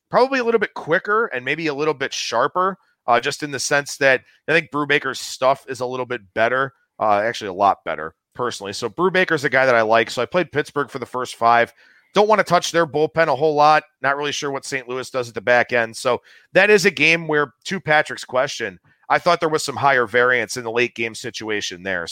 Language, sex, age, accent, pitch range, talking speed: English, male, 40-59, American, 125-160 Hz, 240 wpm